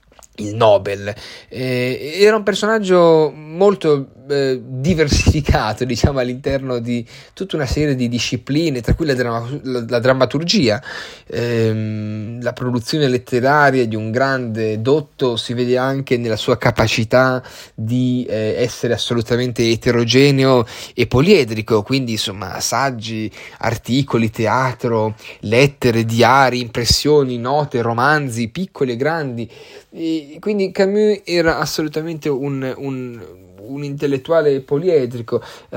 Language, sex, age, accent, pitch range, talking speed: Italian, male, 30-49, native, 115-135 Hz, 110 wpm